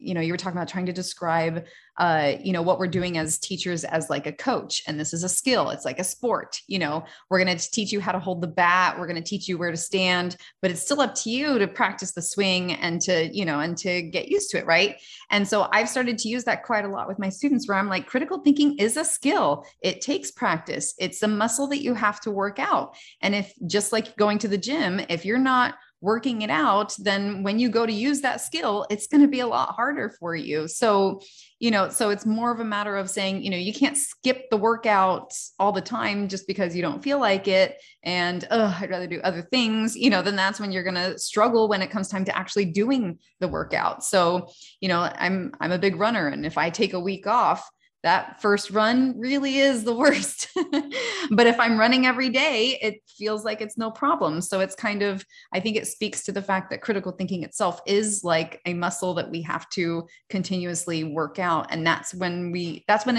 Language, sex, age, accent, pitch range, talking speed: English, female, 30-49, American, 180-225 Hz, 240 wpm